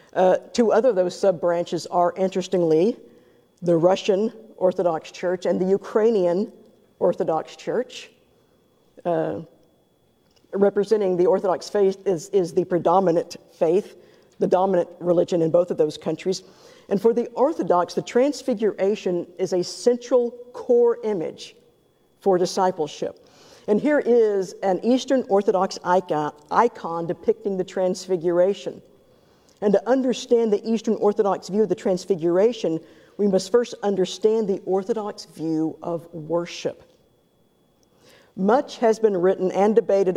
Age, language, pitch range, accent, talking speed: 50-69, English, 180-225 Hz, American, 125 wpm